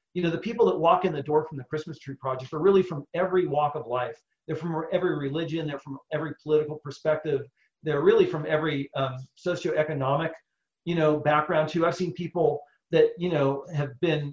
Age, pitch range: 40-59, 145-180 Hz